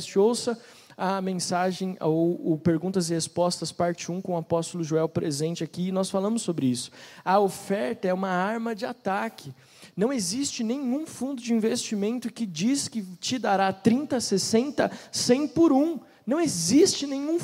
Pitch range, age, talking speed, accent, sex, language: 175-230 Hz, 20-39, 160 wpm, Brazilian, male, Portuguese